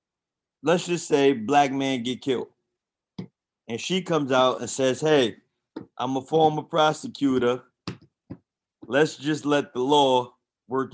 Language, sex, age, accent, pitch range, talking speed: English, male, 30-49, American, 125-165 Hz, 130 wpm